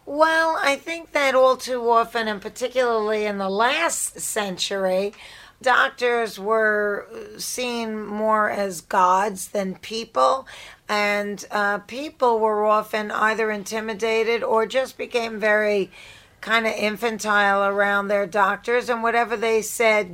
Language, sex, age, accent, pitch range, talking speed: English, female, 40-59, American, 205-230 Hz, 125 wpm